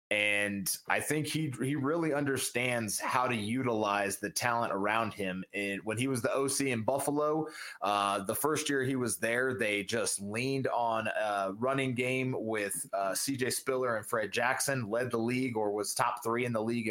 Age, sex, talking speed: 20-39, male, 190 wpm